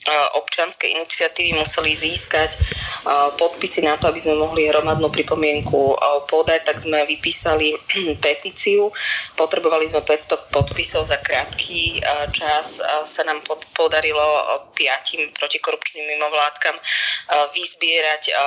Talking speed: 100 wpm